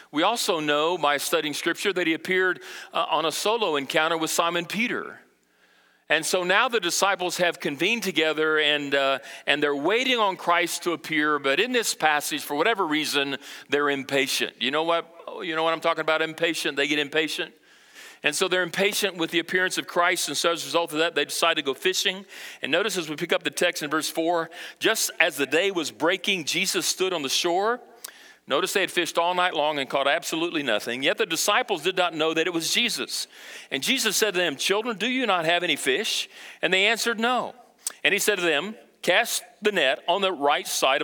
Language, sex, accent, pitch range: English, male, American, 155-200 Hz